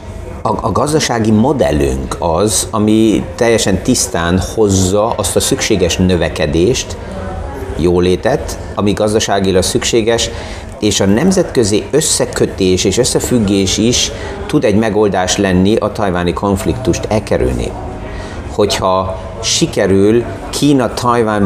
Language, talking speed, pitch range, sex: Hungarian, 95 wpm, 95-110 Hz, male